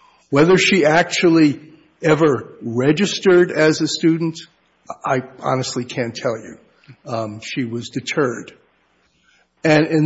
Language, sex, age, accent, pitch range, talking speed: English, male, 50-69, American, 130-160 Hz, 115 wpm